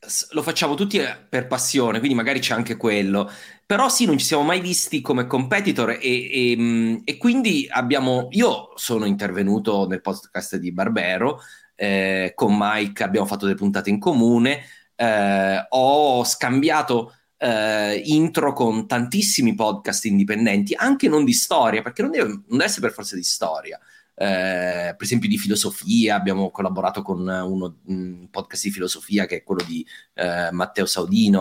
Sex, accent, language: male, native, Italian